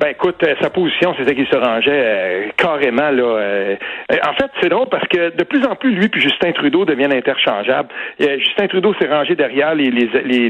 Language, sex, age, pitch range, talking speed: French, male, 60-79, 140-210 Hz, 210 wpm